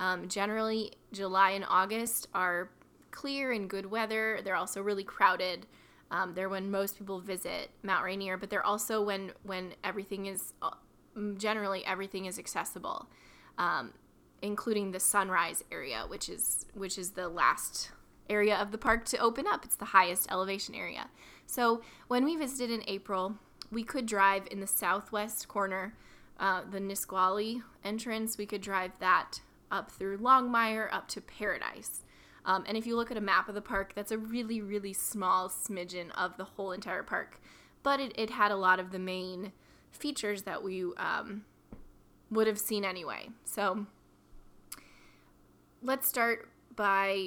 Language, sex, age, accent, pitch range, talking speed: English, female, 10-29, American, 190-220 Hz, 160 wpm